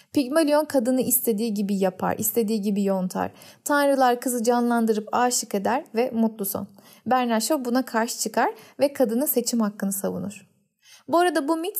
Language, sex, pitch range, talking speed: Turkish, female, 220-285 Hz, 150 wpm